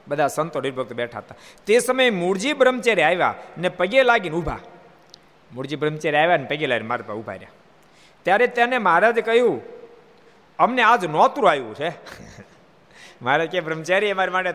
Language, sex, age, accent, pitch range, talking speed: Gujarati, male, 60-79, native, 145-240 Hz, 70 wpm